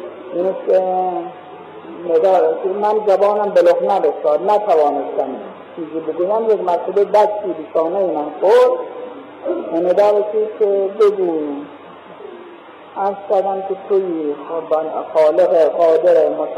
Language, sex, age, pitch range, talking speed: Persian, male, 50-69, 175-255 Hz, 90 wpm